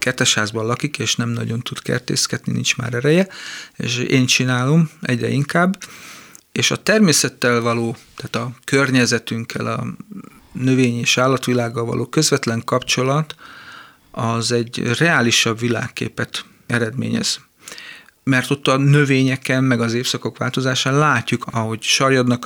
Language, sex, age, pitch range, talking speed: Hungarian, male, 40-59, 120-140 Hz, 125 wpm